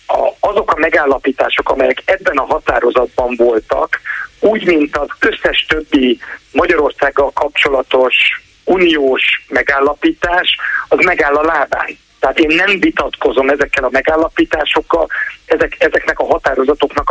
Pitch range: 135-165 Hz